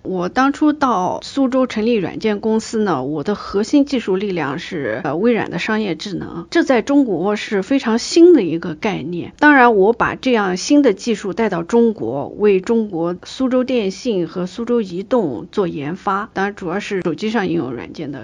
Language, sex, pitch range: Chinese, female, 175-240 Hz